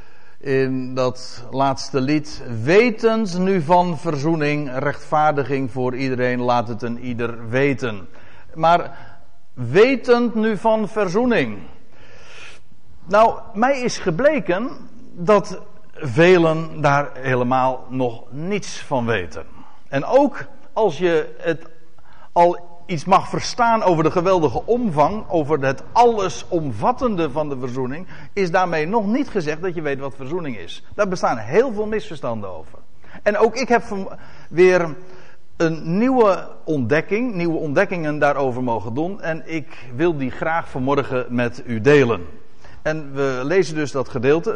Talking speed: 130 wpm